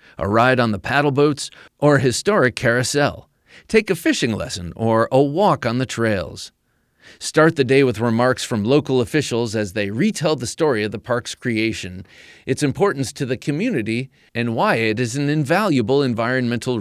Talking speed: 175 wpm